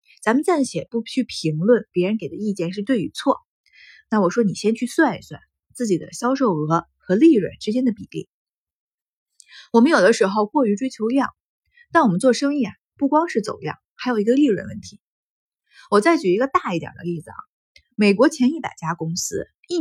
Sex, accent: female, native